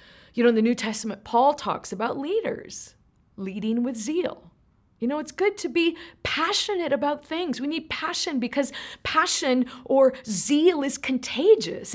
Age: 30-49